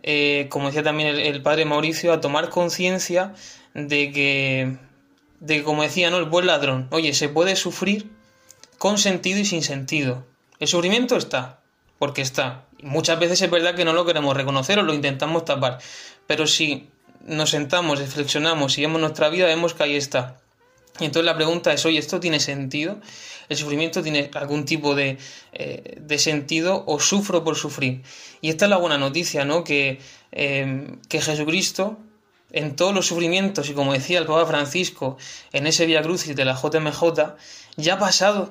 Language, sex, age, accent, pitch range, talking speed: Spanish, male, 20-39, Spanish, 145-175 Hz, 175 wpm